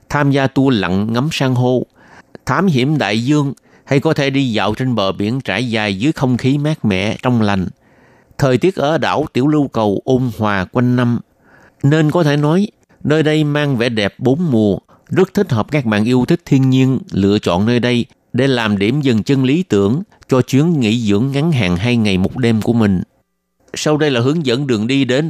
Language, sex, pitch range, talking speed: Vietnamese, male, 110-145 Hz, 215 wpm